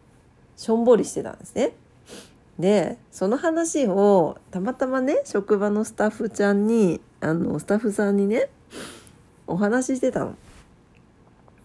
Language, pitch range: Japanese, 165-225 Hz